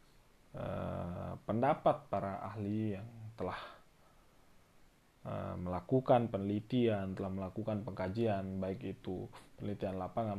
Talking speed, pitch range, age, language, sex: 90 wpm, 95-115 Hz, 20-39, Indonesian, male